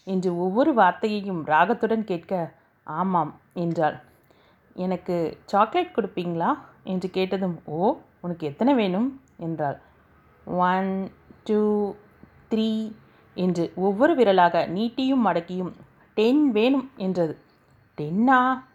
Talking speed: 95 wpm